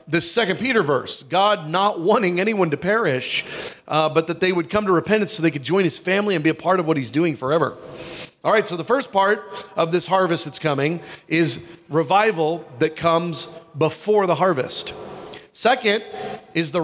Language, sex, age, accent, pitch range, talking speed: English, male, 40-59, American, 150-195 Hz, 195 wpm